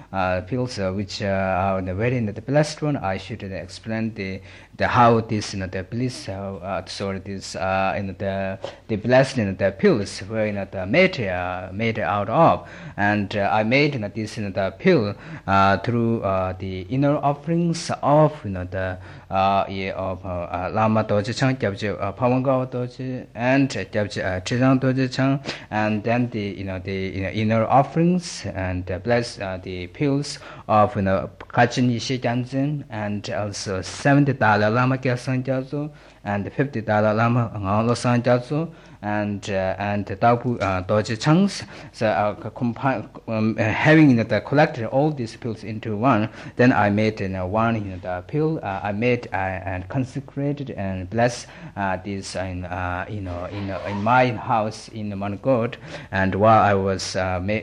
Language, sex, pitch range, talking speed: Italian, male, 95-125 Hz, 180 wpm